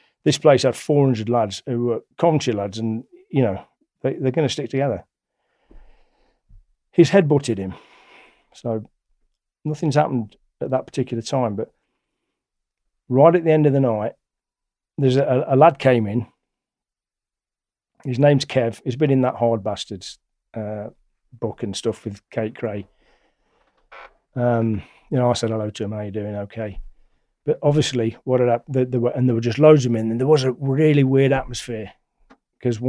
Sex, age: male, 40-59